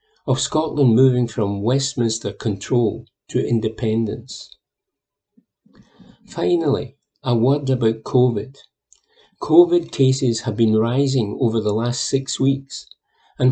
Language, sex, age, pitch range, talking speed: English, male, 50-69, 115-135 Hz, 105 wpm